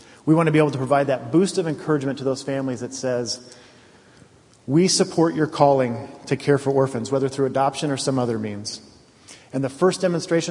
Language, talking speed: English, 200 wpm